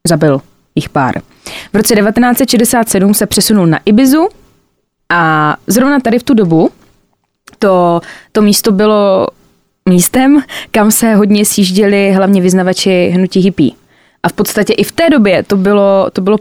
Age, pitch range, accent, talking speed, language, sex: 20-39, 180-230 Hz, native, 145 wpm, Czech, female